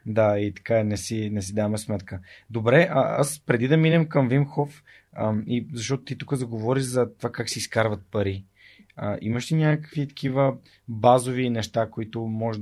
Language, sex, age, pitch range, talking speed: Bulgarian, male, 30-49, 110-130 Hz, 180 wpm